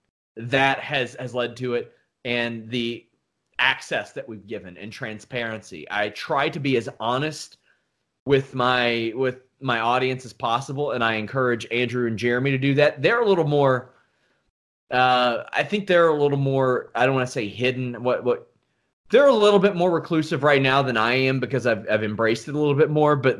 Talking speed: 195 wpm